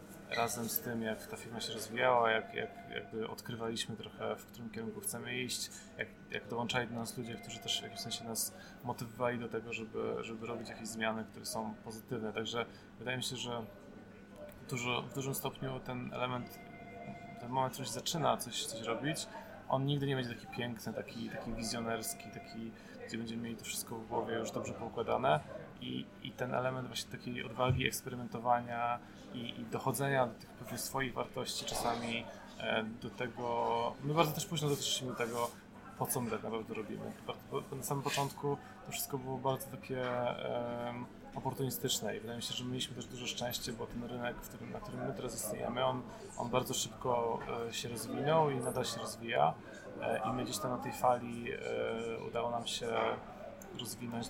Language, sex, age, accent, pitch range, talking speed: Polish, male, 20-39, native, 115-125 Hz, 180 wpm